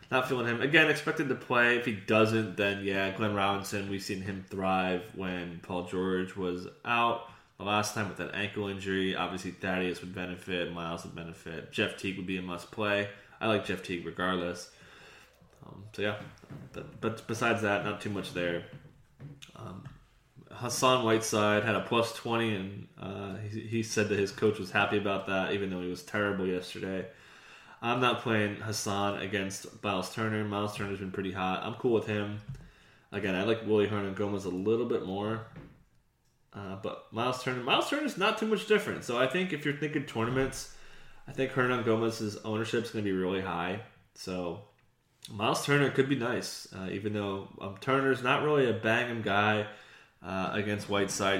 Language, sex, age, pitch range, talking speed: English, male, 20-39, 95-115 Hz, 185 wpm